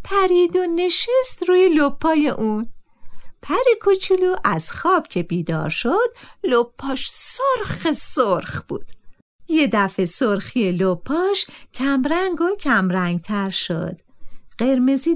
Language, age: Persian, 50-69